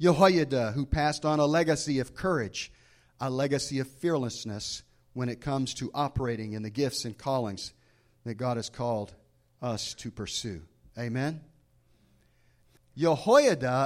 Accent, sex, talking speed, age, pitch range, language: American, male, 135 wpm, 40-59, 125-190 Hz, English